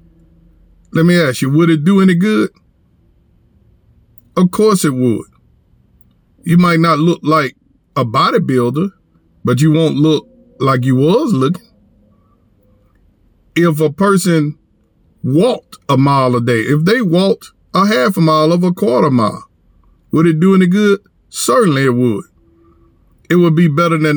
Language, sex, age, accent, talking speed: English, male, 50-69, American, 150 wpm